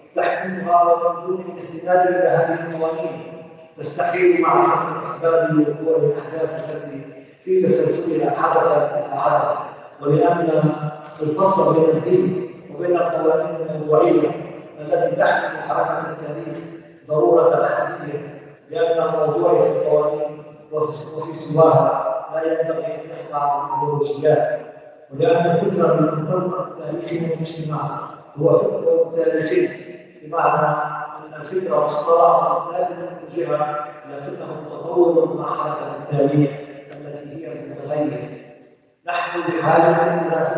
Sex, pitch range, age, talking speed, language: male, 150-170 Hz, 40-59, 90 wpm, English